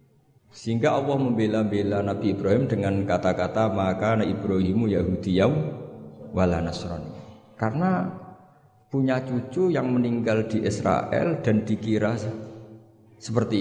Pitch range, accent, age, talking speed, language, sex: 95-120 Hz, native, 50-69, 95 wpm, Indonesian, male